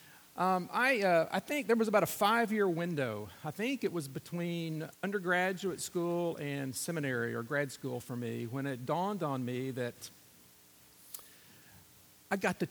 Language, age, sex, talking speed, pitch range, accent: English, 50-69, male, 160 wpm, 125-170 Hz, American